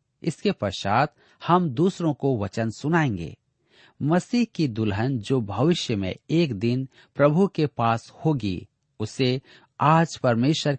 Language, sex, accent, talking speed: Hindi, male, native, 120 wpm